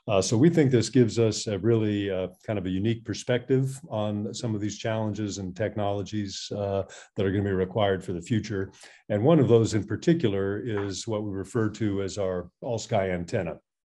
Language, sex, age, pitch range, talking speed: Turkish, male, 50-69, 95-110 Hz, 205 wpm